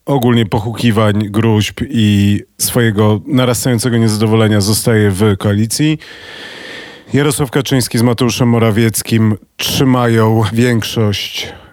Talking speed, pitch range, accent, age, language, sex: 85 wpm, 100-120 Hz, native, 40-59, Polish, male